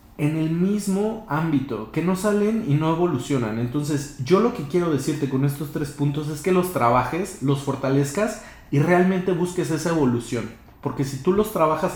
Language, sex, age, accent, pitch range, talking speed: Spanish, male, 30-49, Mexican, 130-160 Hz, 180 wpm